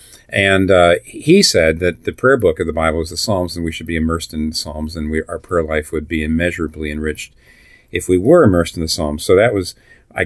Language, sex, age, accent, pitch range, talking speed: English, male, 50-69, American, 85-100 Hz, 245 wpm